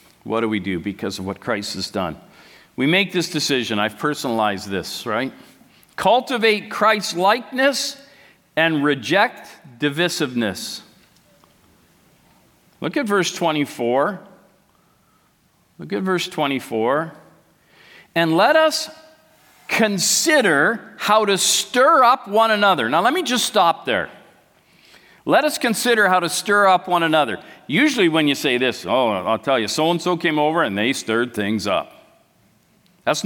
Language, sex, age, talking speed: English, male, 50-69, 135 wpm